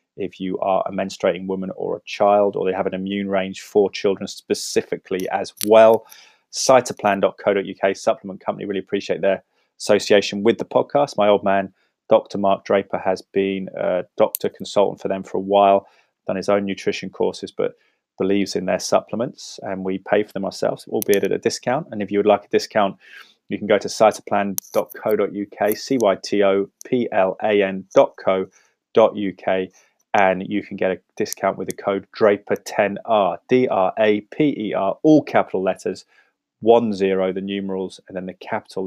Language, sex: English, male